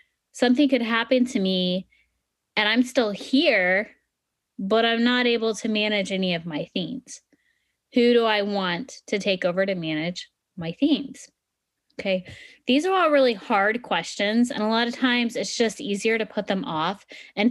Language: English